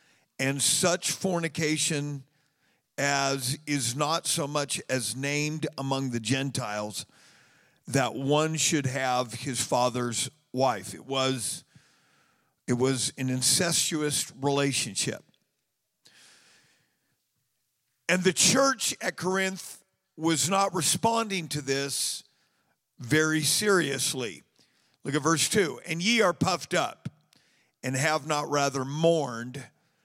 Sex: male